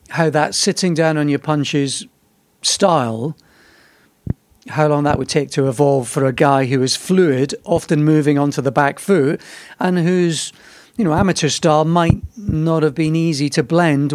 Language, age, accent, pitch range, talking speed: English, 40-59, British, 135-165 Hz, 160 wpm